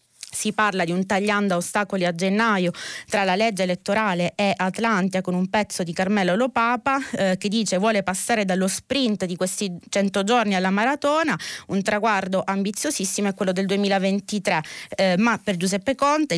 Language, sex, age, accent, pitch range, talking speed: Italian, female, 20-39, native, 185-230 Hz, 165 wpm